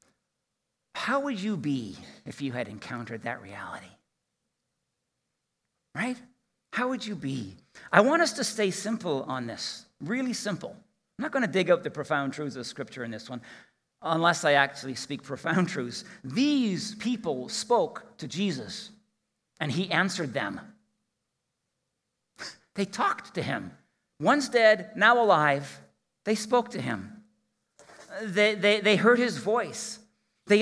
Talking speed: 145 wpm